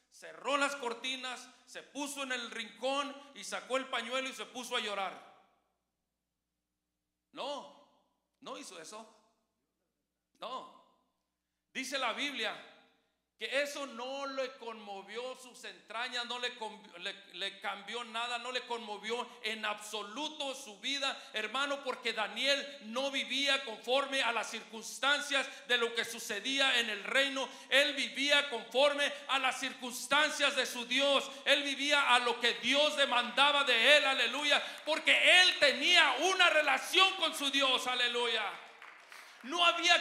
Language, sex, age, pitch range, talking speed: English, male, 50-69, 245-300 Hz, 135 wpm